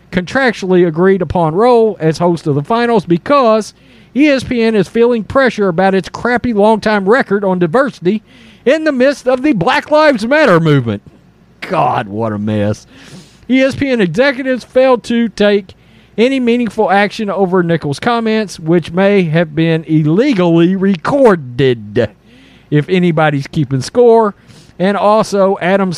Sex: male